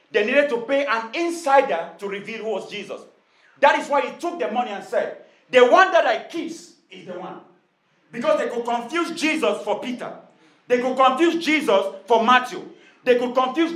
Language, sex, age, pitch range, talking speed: English, male, 40-59, 205-295 Hz, 190 wpm